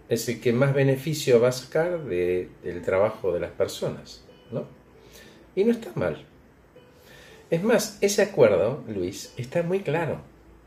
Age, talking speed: 50-69, 145 wpm